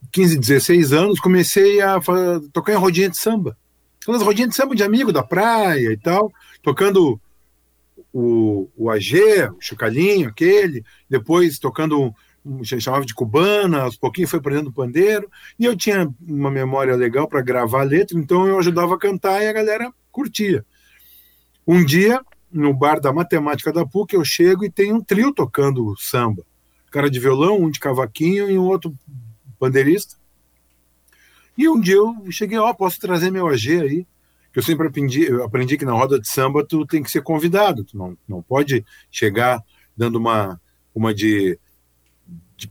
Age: 50-69